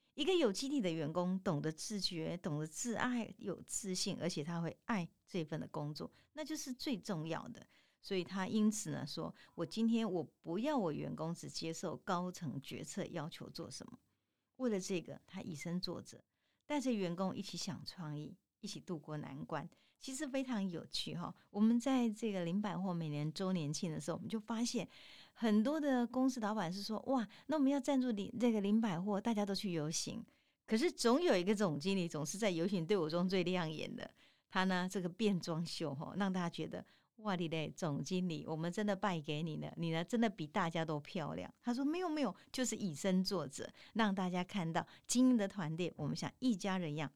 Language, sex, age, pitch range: Chinese, female, 50-69, 165-220 Hz